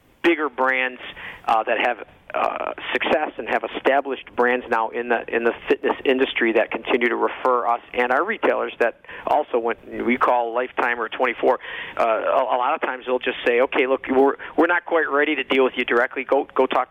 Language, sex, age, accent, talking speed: English, male, 50-69, American, 205 wpm